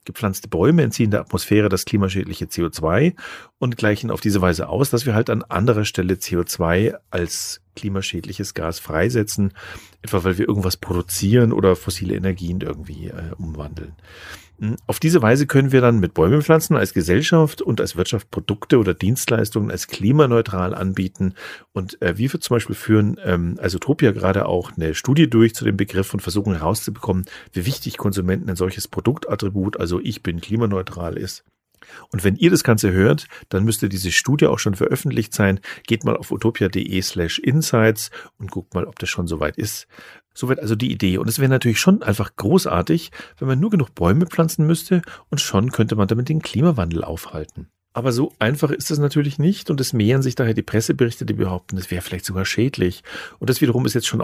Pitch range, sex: 95-120 Hz, male